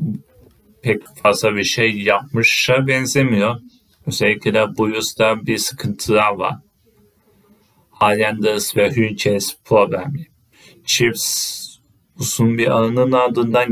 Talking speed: 90 wpm